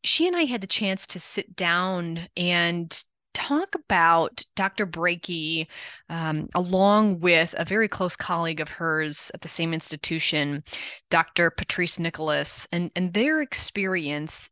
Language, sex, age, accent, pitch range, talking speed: English, female, 20-39, American, 160-195 Hz, 140 wpm